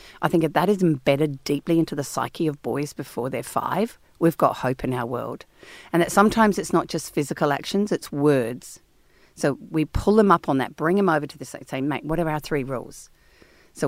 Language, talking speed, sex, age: English, 225 wpm, female, 40-59